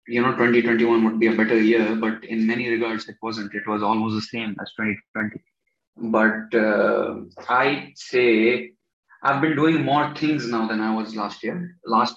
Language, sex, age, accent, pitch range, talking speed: English, male, 20-39, Indian, 115-145 Hz, 180 wpm